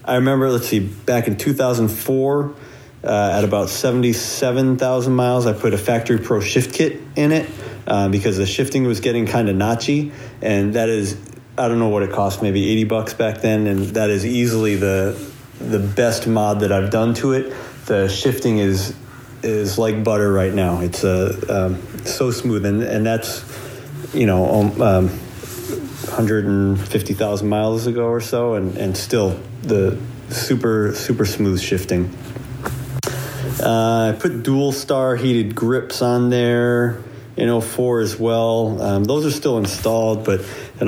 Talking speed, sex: 165 wpm, male